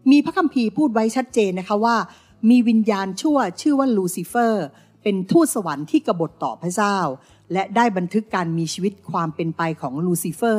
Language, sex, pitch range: Thai, female, 170-245 Hz